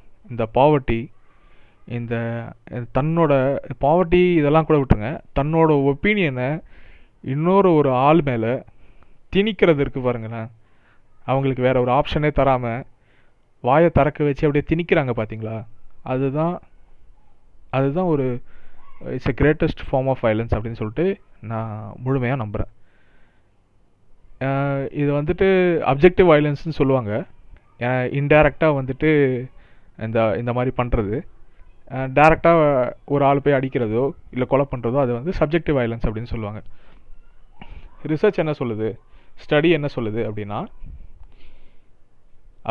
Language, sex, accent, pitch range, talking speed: Tamil, male, native, 115-150 Hz, 100 wpm